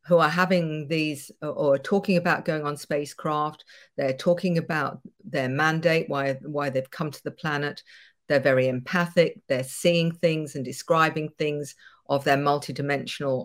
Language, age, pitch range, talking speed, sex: English, 50-69, 140-170 Hz, 155 wpm, female